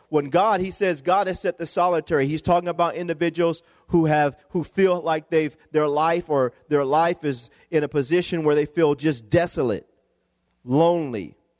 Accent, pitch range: American, 150-175 Hz